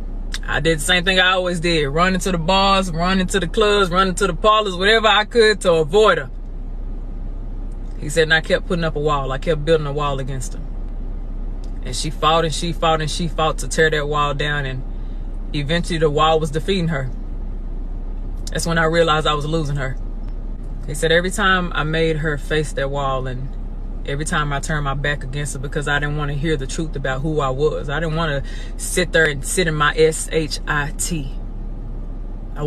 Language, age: English, 20-39